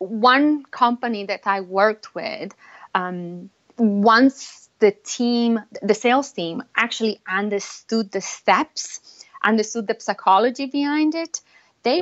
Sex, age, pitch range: female, 30-49, 195-250 Hz